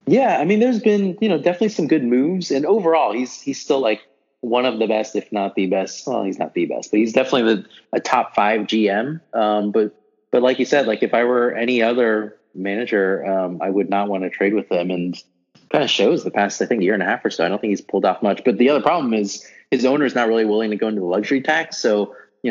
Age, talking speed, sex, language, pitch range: 30-49, 265 wpm, male, English, 95-125 Hz